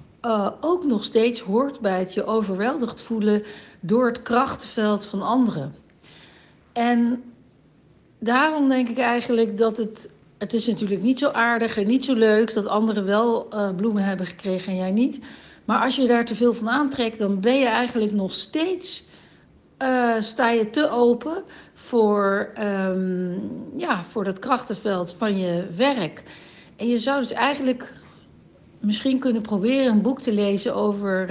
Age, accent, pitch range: 60-79, Dutch, 185-240 Hz